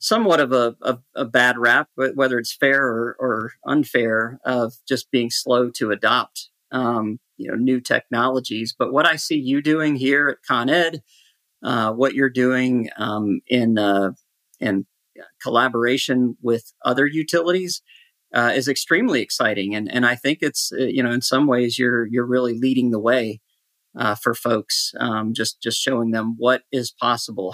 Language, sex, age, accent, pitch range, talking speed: English, male, 50-69, American, 120-140 Hz, 170 wpm